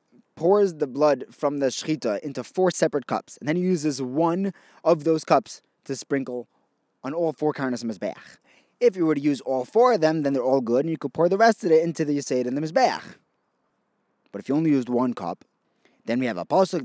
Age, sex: 20-39, male